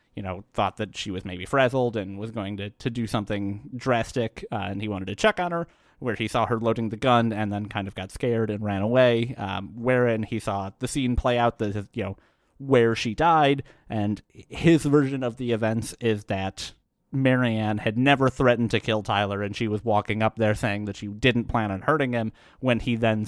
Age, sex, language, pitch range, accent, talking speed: 30-49, male, English, 105-125 Hz, American, 220 wpm